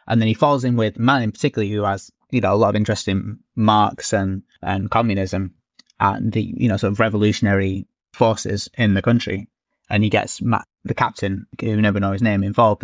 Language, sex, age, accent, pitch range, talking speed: English, male, 20-39, British, 100-120 Hz, 200 wpm